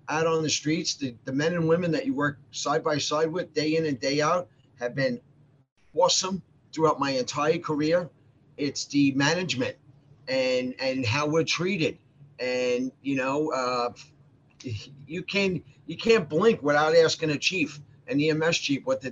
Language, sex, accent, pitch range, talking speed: English, male, American, 140-175 Hz, 170 wpm